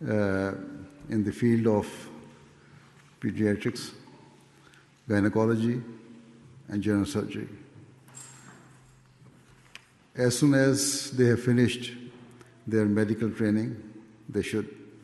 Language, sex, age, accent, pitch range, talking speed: English, male, 60-79, Indian, 100-120 Hz, 85 wpm